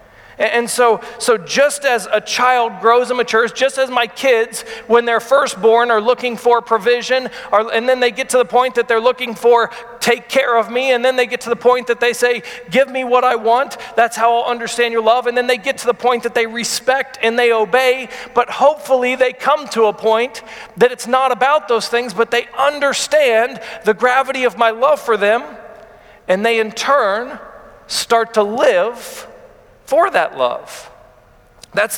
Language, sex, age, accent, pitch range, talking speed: English, male, 40-59, American, 205-250 Hz, 200 wpm